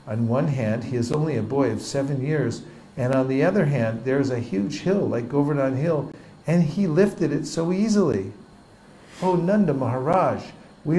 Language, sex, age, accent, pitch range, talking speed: English, male, 60-79, American, 115-155 Hz, 185 wpm